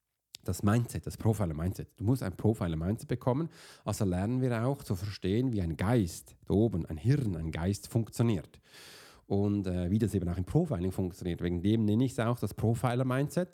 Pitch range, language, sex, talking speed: 90-125 Hz, German, male, 185 wpm